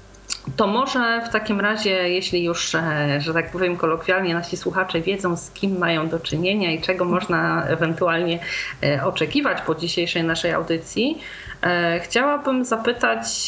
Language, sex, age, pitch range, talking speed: Polish, female, 30-49, 170-195 Hz, 135 wpm